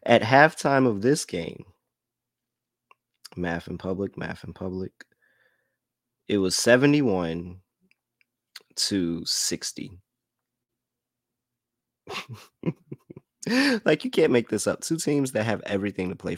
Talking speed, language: 105 wpm, English